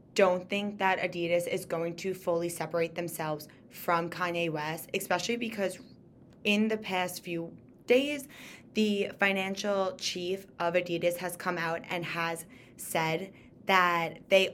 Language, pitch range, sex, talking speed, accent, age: English, 175-205 Hz, female, 135 wpm, American, 20-39